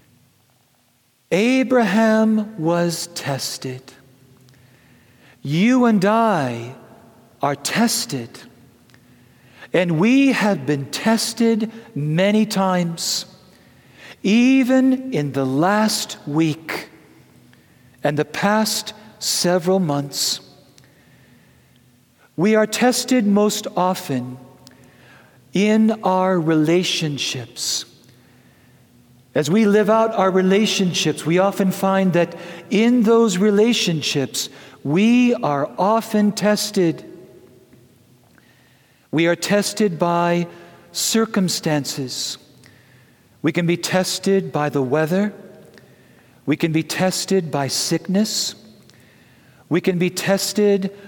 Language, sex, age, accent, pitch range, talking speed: English, male, 50-69, American, 130-205 Hz, 85 wpm